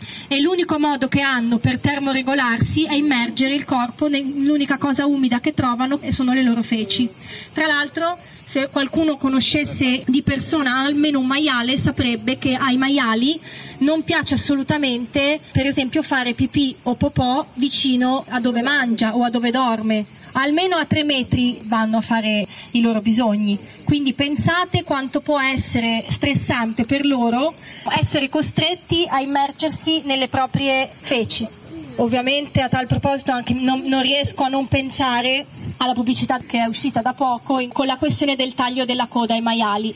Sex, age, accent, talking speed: female, 20-39, native, 155 wpm